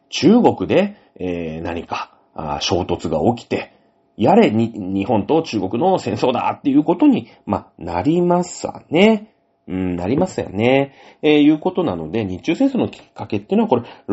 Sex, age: male, 40-59